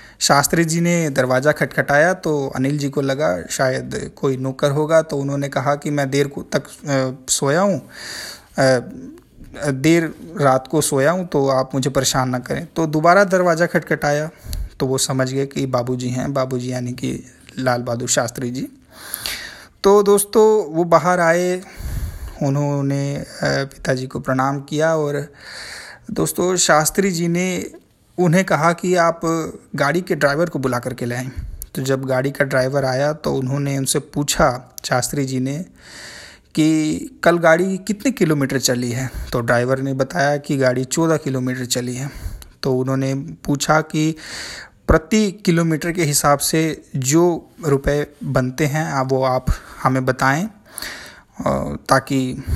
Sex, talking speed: male, 145 wpm